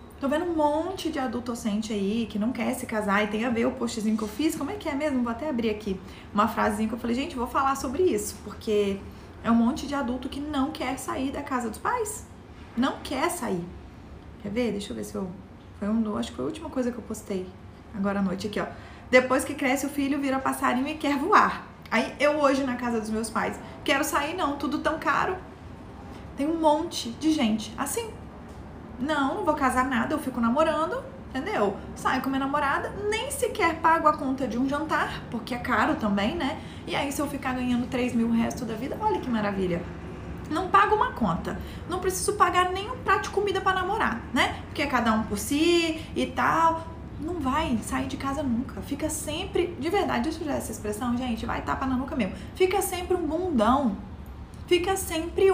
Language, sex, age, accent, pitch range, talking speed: Portuguese, female, 20-39, Brazilian, 235-320 Hz, 215 wpm